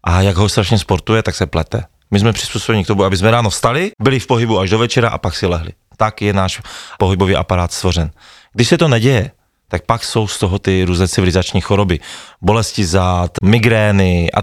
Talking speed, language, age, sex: 210 wpm, Slovak, 30-49, male